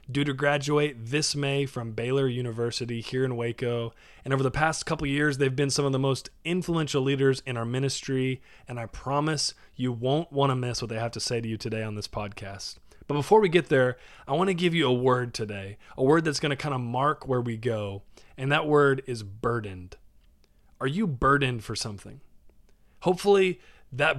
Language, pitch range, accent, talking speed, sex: English, 115-145 Hz, American, 210 wpm, male